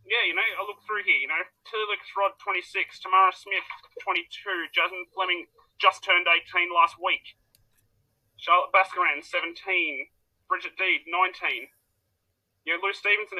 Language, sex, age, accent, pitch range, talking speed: English, male, 30-49, Australian, 115-195 Hz, 150 wpm